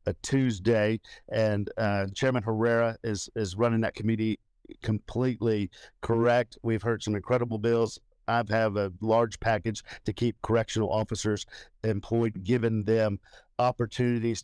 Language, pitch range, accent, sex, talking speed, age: English, 105-115 Hz, American, male, 130 wpm, 50-69